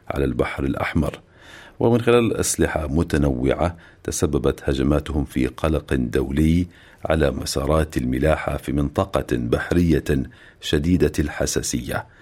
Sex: male